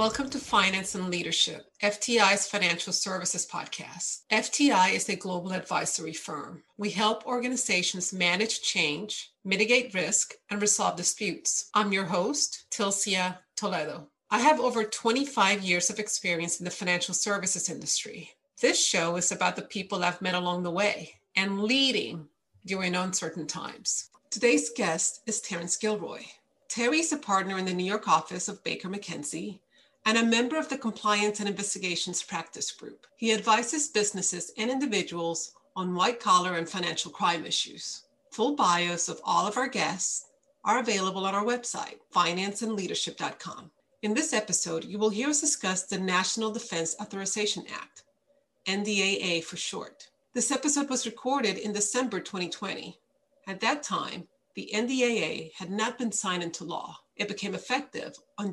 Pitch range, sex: 180-230 Hz, female